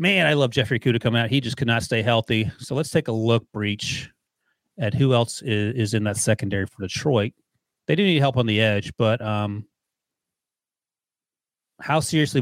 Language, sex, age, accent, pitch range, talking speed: English, male, 30-49, American, 110-140 Hz, 195 wpm